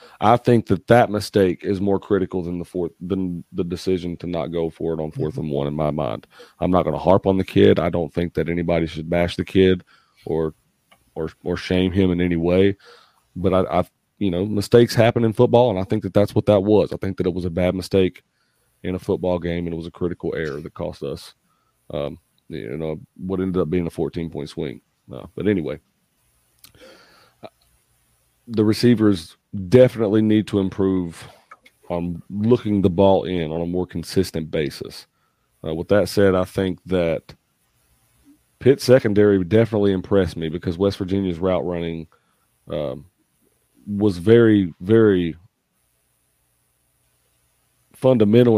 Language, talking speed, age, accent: English, 175 wpm, 30-49, American